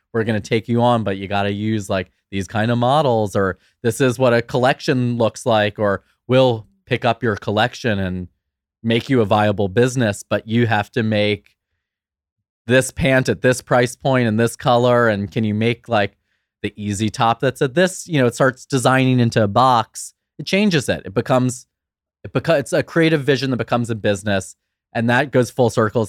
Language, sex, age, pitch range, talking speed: English, male, 20-39, 100-120 Hz, 205 wpm